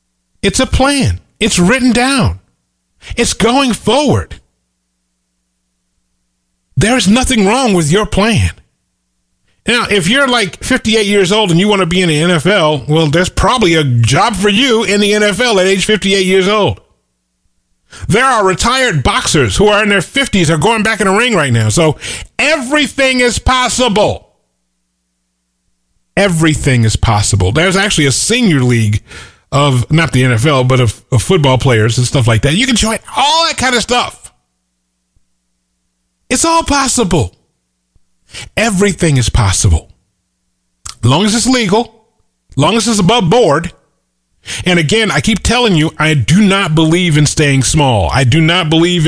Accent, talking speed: American, 160 wpm